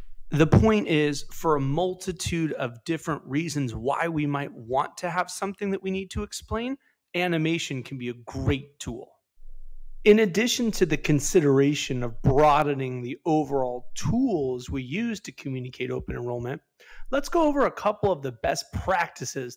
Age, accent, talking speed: 30-49, American, 160 wpm